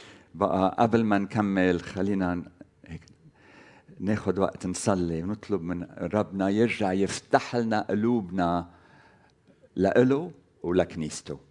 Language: Arabic